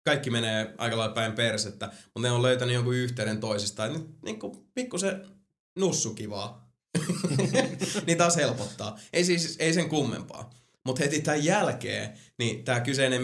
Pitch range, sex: 110-135 Hz, male